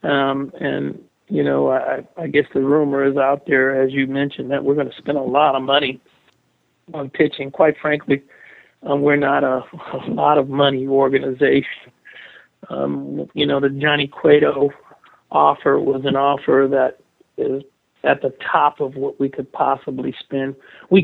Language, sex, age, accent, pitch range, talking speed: English, male, 50-69, American, 130-140 Hz, 170 wpm